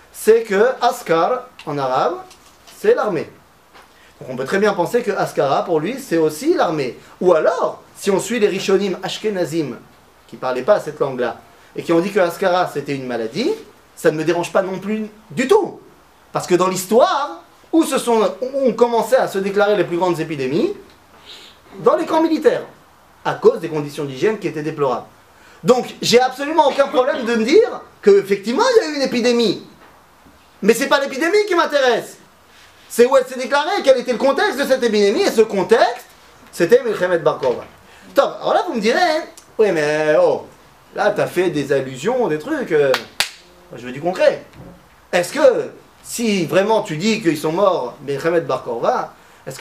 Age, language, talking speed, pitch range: 30-49, French, 190 wpm, 175-285 Hz